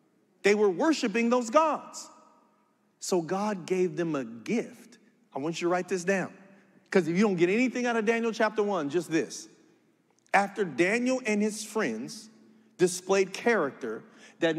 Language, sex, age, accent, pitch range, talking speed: English, male, 40-59, American, 155-225 Hz, 160 wpm